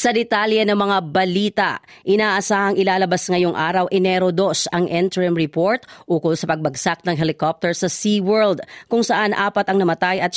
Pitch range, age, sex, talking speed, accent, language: 185-220 Hz, 40-59, female, 155 wpm, native, Filipino